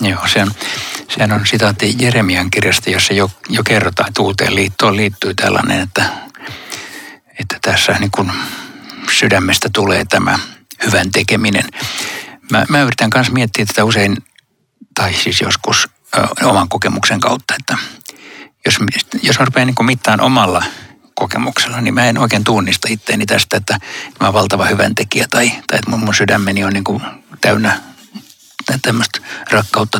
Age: 60-79